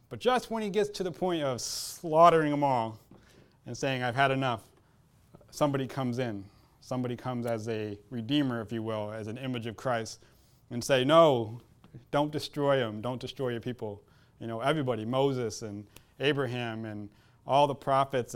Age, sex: 30-49, male